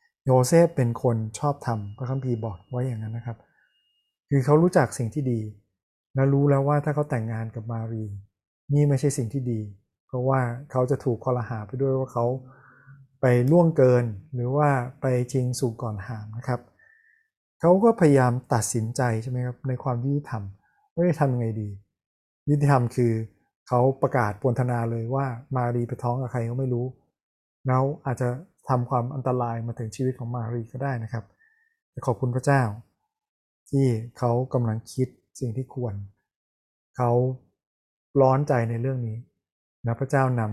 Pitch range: 115-135 Hz